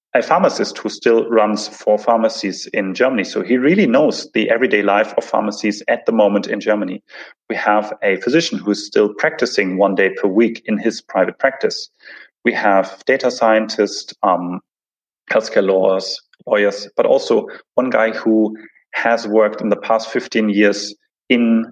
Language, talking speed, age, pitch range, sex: English, 165 wpm, 30-49, 105-135 Hz, male